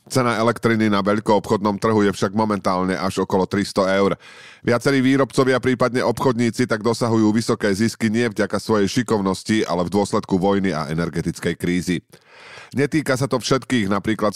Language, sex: Czech, male